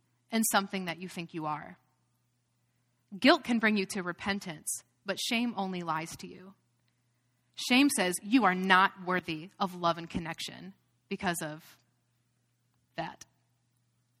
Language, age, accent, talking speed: English, 20-39, American, 135 wpm